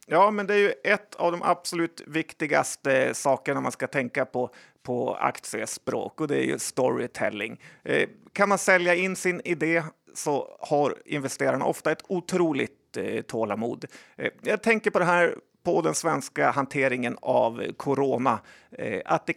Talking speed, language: 160 wpm, Swedish